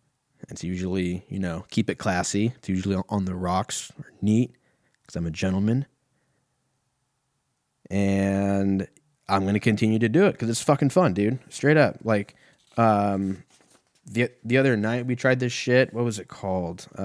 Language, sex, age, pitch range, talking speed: English, male, 20-39, 95-120 Hz, 165 wpm